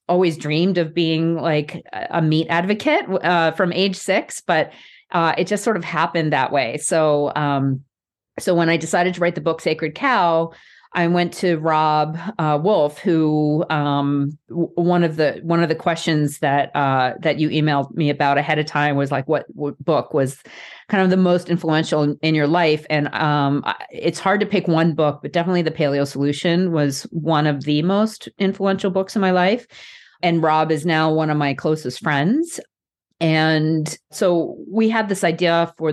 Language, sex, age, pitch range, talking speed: English, female, 40-59, 150-175 Hz, 185 wpm